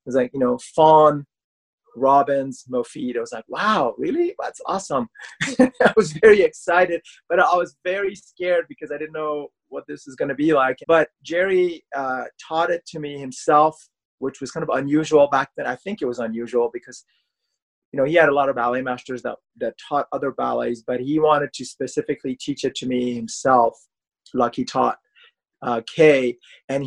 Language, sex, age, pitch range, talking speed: English, male, 30-49, 125-160 Hz, 190 wpm